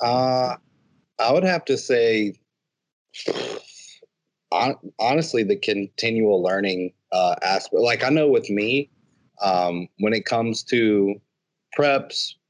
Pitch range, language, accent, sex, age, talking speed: 95-130 Hz, English, American, male, 30-49, 110 wpm